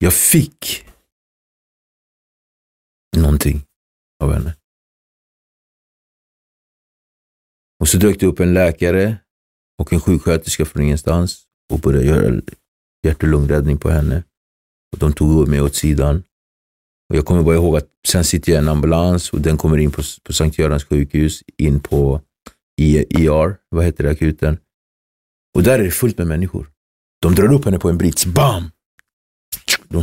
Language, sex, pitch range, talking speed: English, male, 75-110 Hz, 140 wpm